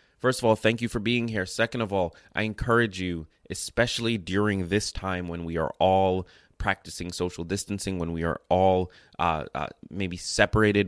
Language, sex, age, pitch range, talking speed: English, male, 20-39, 85-100 Hz, 180 wpm